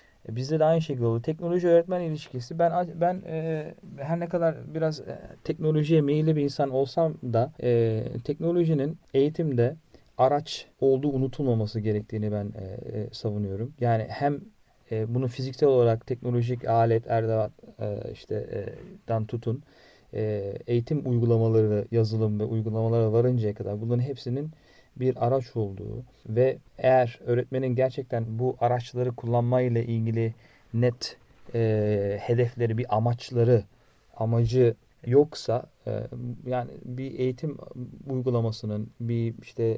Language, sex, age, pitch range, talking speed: Turkish, male, 40-59, 115-135 Hz, 120 wpm